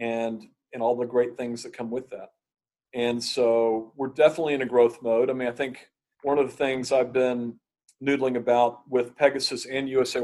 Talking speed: 200 wpm